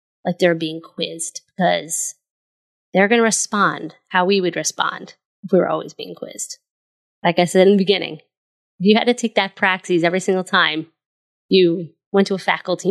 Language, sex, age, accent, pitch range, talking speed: English, female, 20-39, American, 165-195 Hz, 185 wpm